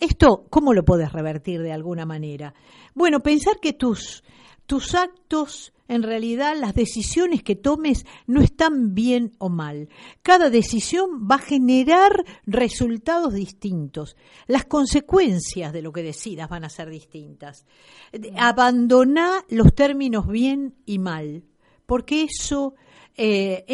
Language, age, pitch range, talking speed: Spanish, 50-69, 185-255 Hz, 130 wpm